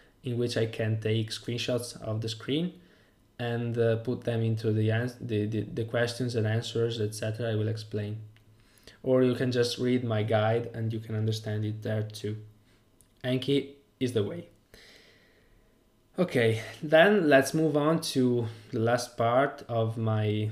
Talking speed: 160 wpm